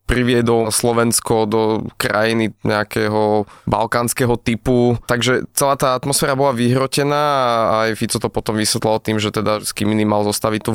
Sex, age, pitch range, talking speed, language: male, 20-39, 110-125 Hz, 145 wpm, Slovak